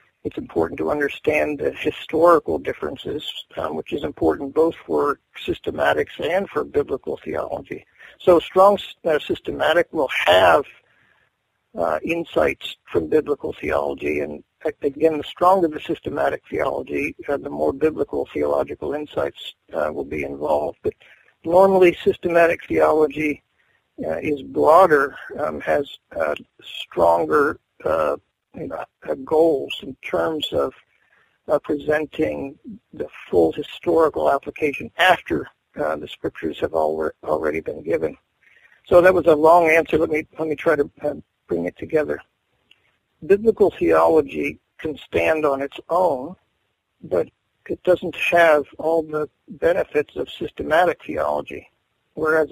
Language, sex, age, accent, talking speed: English, male, 50-69, American, 120 wpm